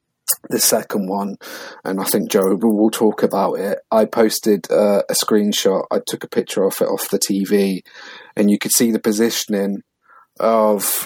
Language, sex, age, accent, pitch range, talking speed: English, male, 30-49, British, 100-120 Hz, 175 wpm